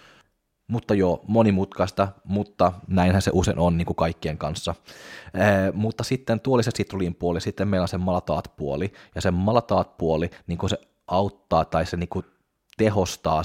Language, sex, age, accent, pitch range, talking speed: Finnish, male, 20-39, native, 80-95 Hz, 160 wpm